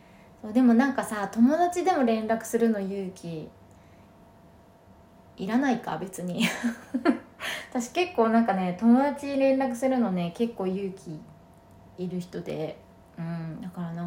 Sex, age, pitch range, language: female, 20-39, 185-235 Hz, Japanese